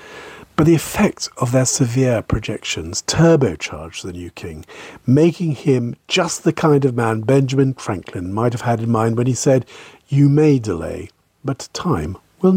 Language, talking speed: English, 160 wpm